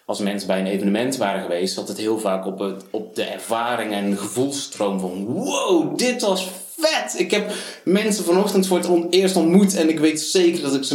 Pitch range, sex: 115-160 Hz, male